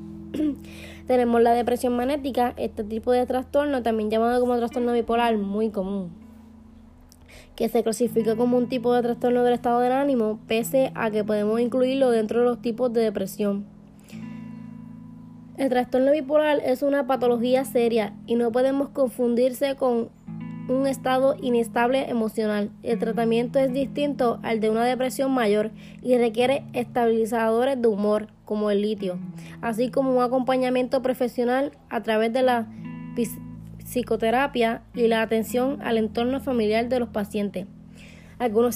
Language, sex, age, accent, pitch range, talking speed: Spanish, female, 20-39, American, 220-255 Hz, 140 wpm